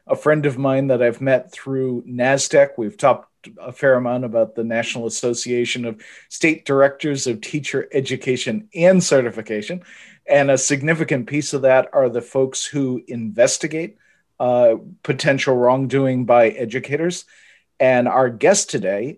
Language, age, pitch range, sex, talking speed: English, 40-59, 120-145 Hz, male, 145 wpm